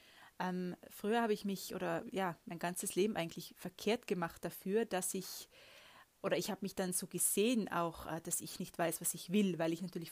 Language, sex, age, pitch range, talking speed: German, female, 20-39, 175-205 Hz, 200 wpm